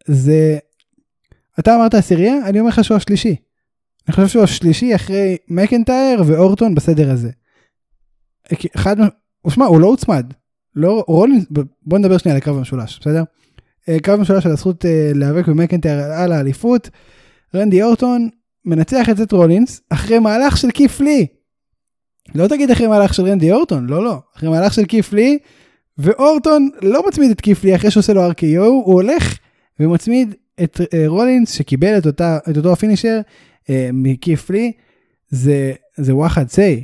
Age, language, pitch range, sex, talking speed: 10-29, Hebrew, 150-215 Hz, male, 150 wpm